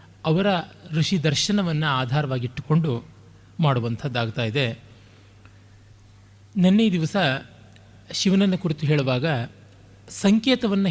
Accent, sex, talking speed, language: native, male, 65 wpm, Kannada